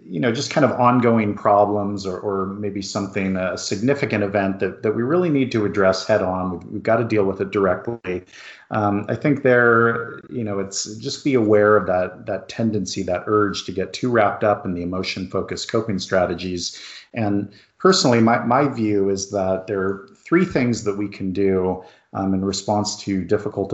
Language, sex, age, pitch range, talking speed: English, male, 40-59, 95-110 Hz, 195 wpm